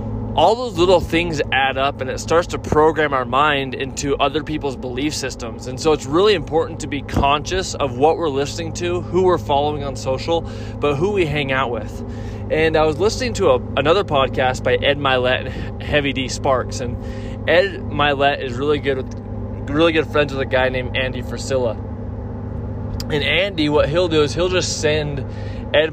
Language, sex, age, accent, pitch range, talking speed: English, male, 20-39, American, 115-150 Hz, 190 wpm